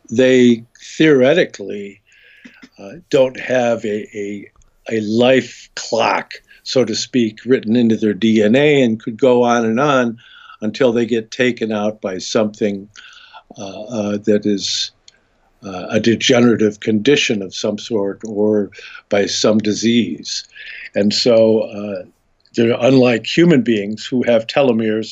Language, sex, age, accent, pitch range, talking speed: English, male, 60-79, American, 105-125 Hz, 130 wpm